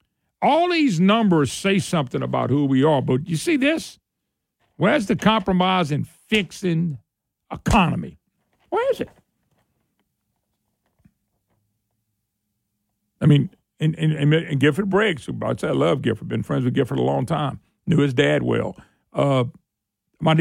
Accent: American